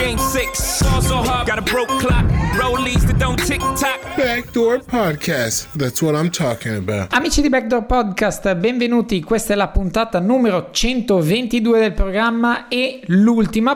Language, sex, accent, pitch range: Italian, male, native, 155-205 Hz